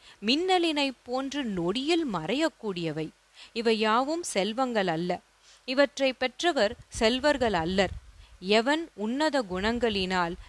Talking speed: 85 wpm